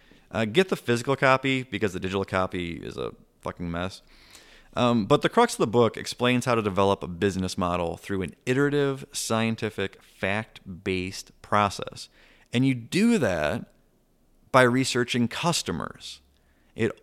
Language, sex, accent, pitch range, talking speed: English, male, American, 95-125 Hz, 145 wpm